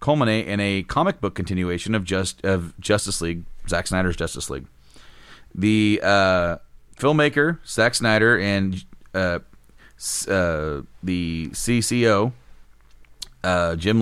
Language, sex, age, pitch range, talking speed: English, male, 30-49, 90-115 Hz, 115 wpm